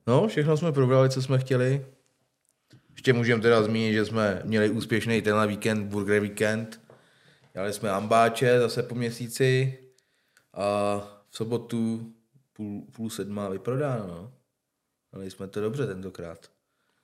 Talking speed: 130 wpm